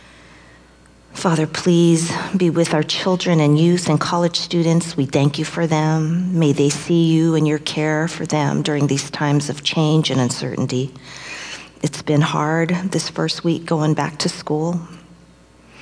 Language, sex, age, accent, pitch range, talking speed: English, female, 40-59, American, 150-170 Hz, 160 wpm